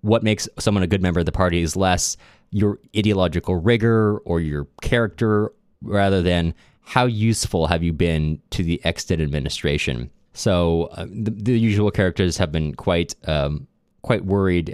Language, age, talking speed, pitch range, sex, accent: English, 20-39, 165 wpm, 85-110 Hz, male, American